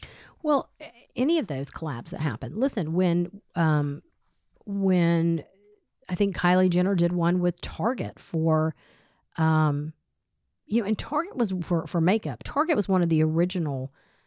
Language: English